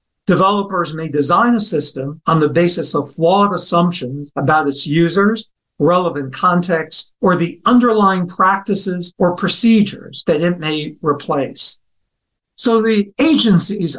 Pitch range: 155-200 Hz